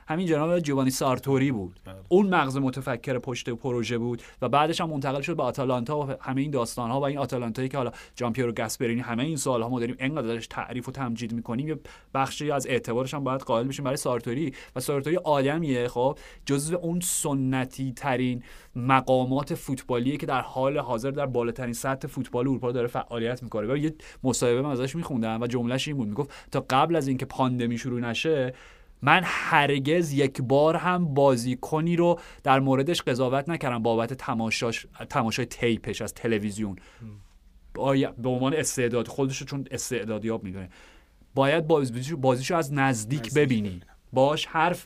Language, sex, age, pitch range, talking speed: Persian, male, 30-49, 120-145 Hz, 170 wpm